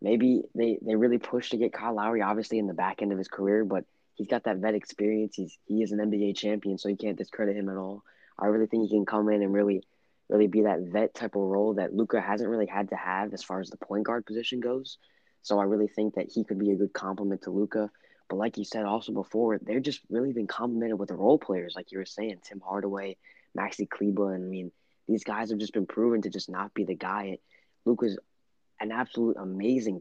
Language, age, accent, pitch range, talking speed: English, 20-39, American, 100-115 Hz, 245 wpm